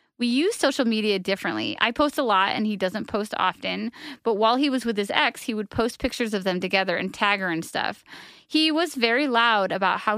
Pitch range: 210-265 Hz